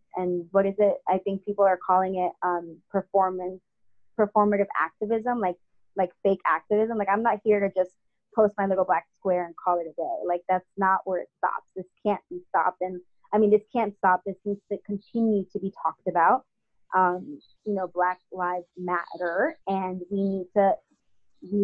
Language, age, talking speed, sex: English, 20-39, 190 wpm, female